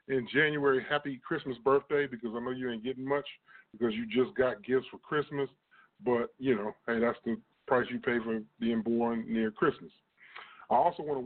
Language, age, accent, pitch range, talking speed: English, 40-59, American, 120-145 Hz, 195 wpm